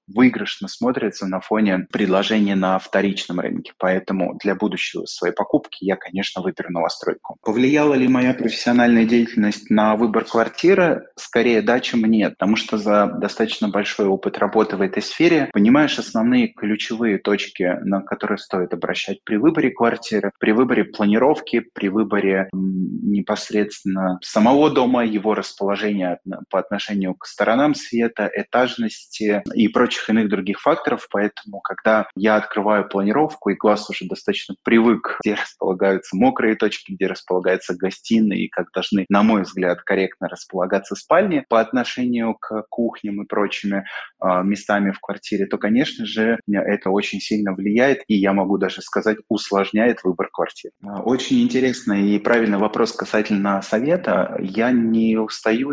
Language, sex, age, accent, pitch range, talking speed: Russian, male, 20-39, native, 100-115 Hz, 140 wpm